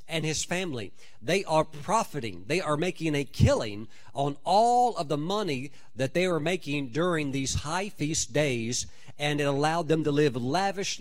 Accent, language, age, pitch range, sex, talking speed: American, English, 50-69, 140-175 Hz, male, 175 wpm